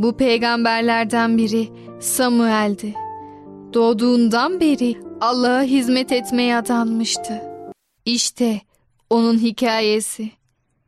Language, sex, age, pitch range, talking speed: Turkish, female, 10-29, 225-275 Hz, 70 wpm